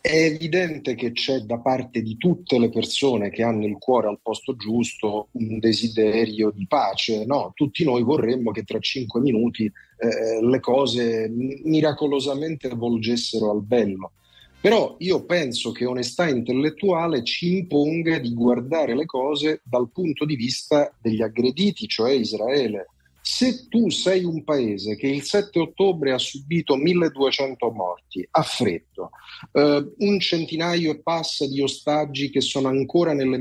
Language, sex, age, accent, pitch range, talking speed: Italian, male, 40-59, native, 120-170 Hz, 145 wpm